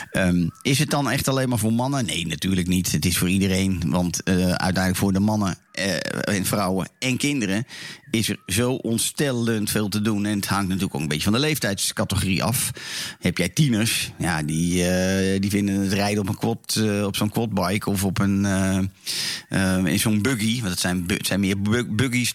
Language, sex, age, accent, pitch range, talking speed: Dutch, male, 40-59, Dutch, 95-115 Hz, 205 wpm